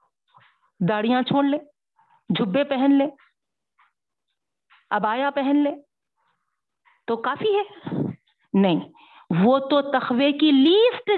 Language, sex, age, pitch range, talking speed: Urdu, female, 50-69, 220-295 Hz, 95 wpm